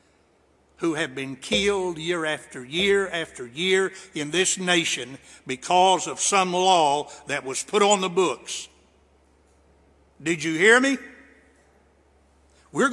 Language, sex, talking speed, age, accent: English, male, 125 wpm, 60-79, American